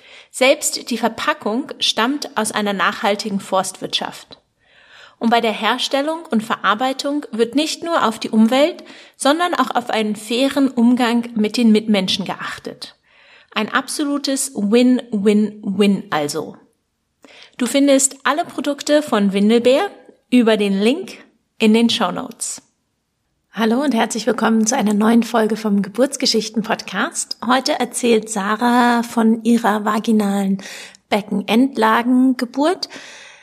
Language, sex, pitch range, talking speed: German, female, 200-245 Hz, 115 wpm